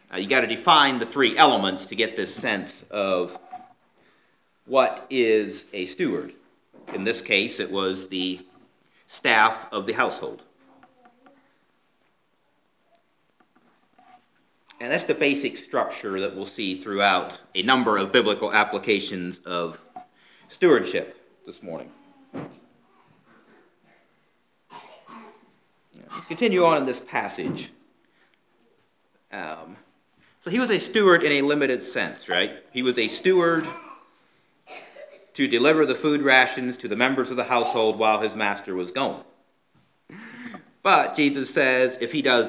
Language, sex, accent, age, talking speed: English, male, American, 40-59, 125 wpm